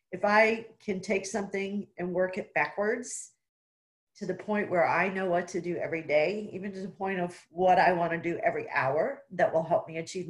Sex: female